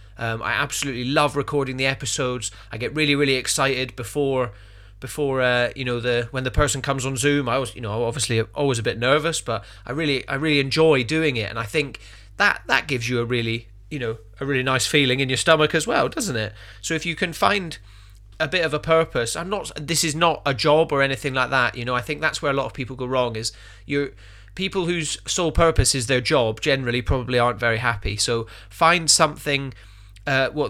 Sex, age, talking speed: male, 30-49, 225 wpm